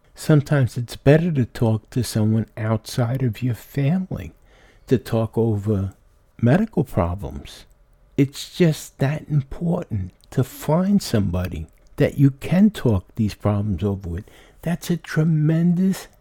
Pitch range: 115-180 Hz